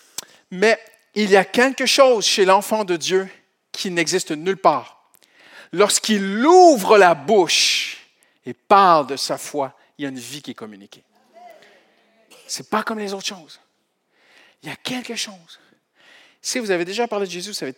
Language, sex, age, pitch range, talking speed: French, male, 50-69, 165-250 Hz, 180 wpm